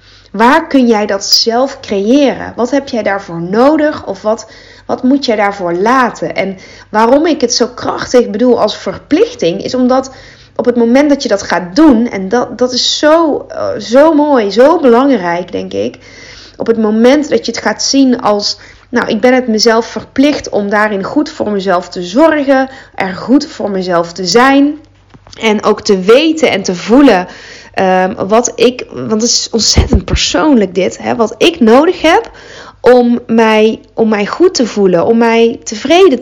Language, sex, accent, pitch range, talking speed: Dutch, female, Dutch, 205-270 Hz, 175 wpm